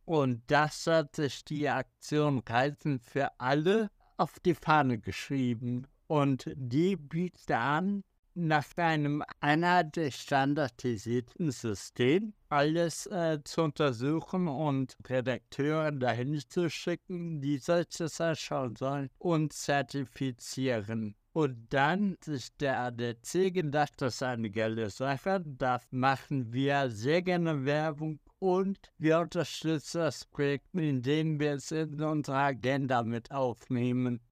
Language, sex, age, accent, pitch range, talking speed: German, male, 60-79, German, 130-165 Hz, 120 wpm